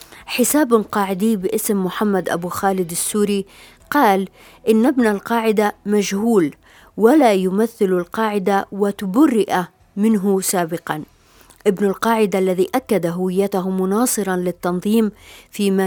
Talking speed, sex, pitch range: 100 wpm, female, 185-205 Hz